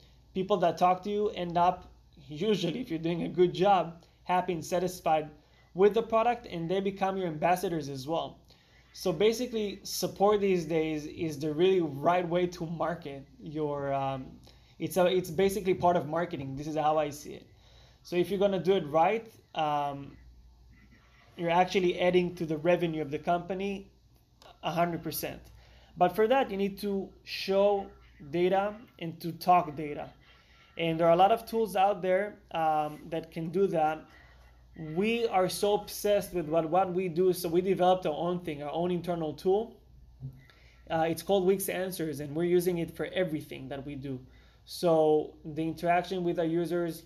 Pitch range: 155-185 Hz